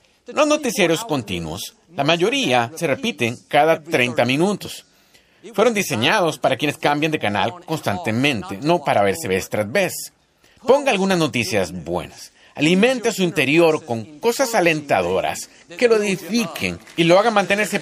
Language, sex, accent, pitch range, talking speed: Spanish, male, Mexican, 135-210 Hz, 145 wpm